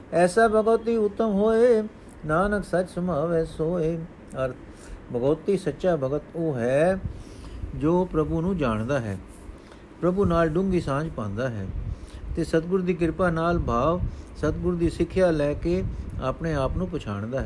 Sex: male